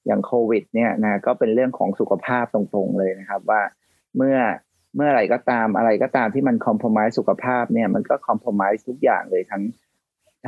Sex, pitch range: male, 110-130 Hz